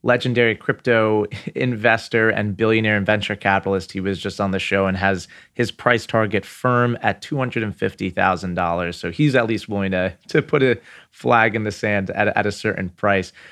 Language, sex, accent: English, male, American